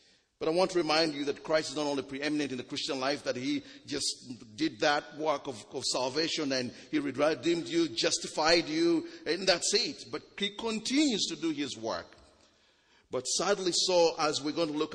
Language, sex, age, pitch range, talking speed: English, male, 50-69, 125-160 Hz, 195 wpm